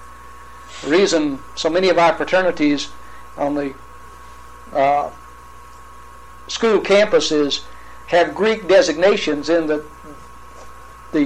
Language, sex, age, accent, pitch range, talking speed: English, male, 60-79, American, 140-190 Hz, 95 wpm